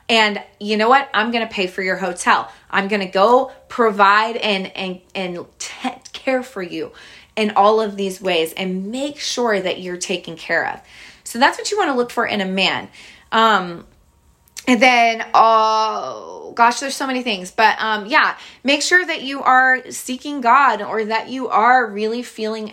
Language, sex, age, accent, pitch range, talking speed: English, female, 20-39, American, 205-285 Hz, 180 wpm